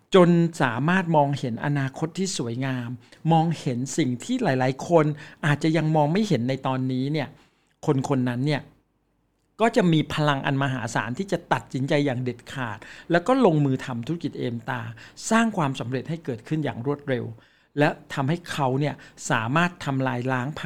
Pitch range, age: 135-170 Hz, 60-79